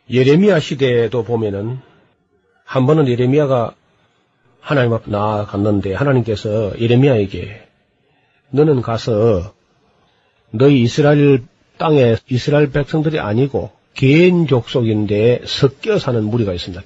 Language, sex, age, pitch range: Korean, male, 40-59, 110-140 Hz